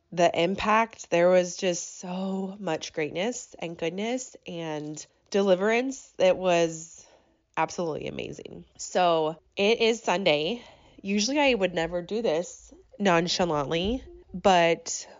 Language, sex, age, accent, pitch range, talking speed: English, female, 20-39, American, 165-220 Hz, 110 wpm